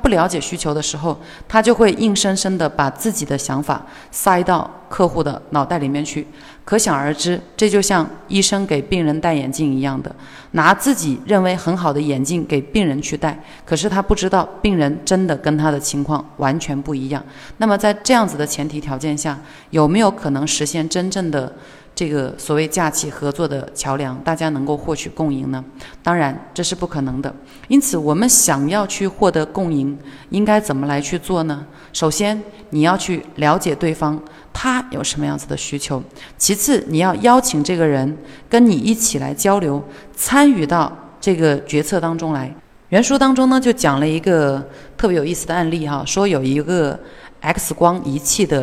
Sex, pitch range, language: female, 145-190 Hz, Chinese